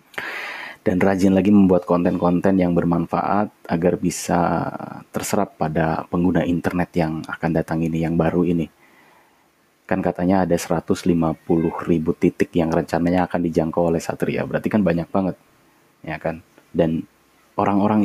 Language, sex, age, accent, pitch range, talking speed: Indonesian, male, 30-49, native, 80-95 Hz, 135 wpm